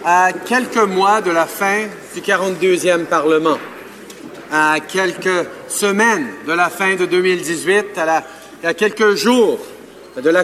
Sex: male